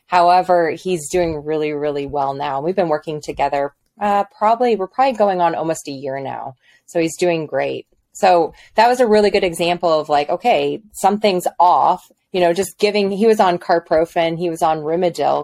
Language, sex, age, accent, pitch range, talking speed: English, female, 20-39, American, 150-190 Hz, 190 wpm